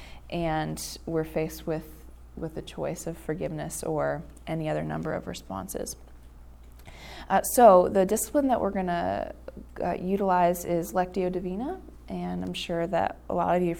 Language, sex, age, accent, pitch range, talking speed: English, female, 20-39, American, 155-185 Hz, 160 wpm